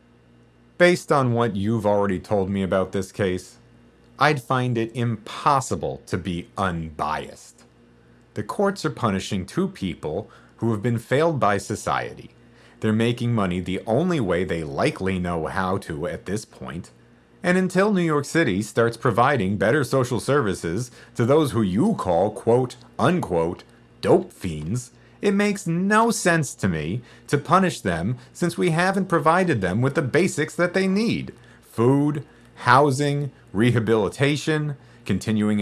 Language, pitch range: English, 90-145 Hz